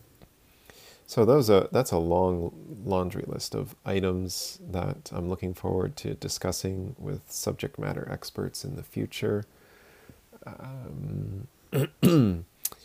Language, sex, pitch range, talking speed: English, male, 90-110 Hz, 110 wpm